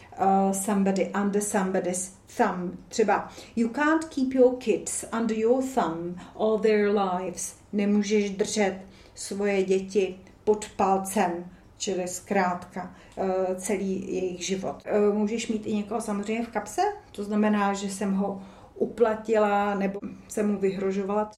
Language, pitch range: Czech, 190-220 Hz